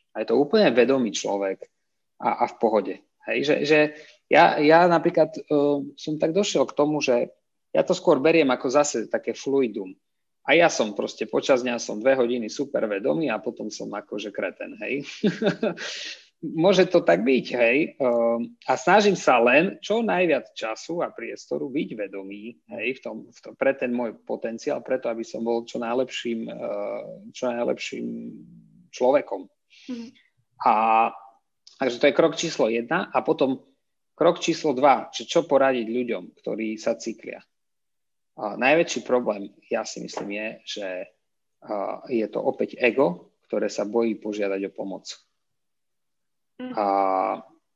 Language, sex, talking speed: Slovak, male, 150 wpm